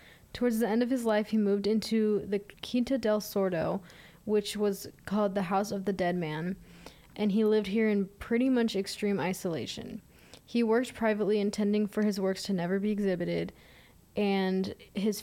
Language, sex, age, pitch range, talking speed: English, female, 20-39, 190-215 Hz, 175 wpm